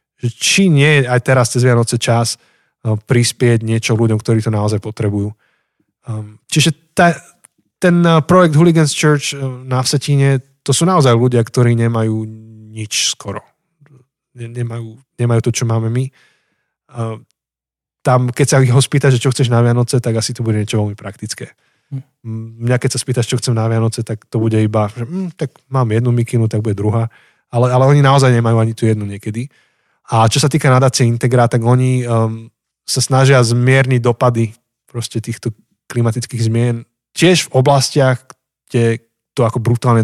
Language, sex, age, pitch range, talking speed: Slovak, male, 20-39, 115-135 Hz, 165 wpm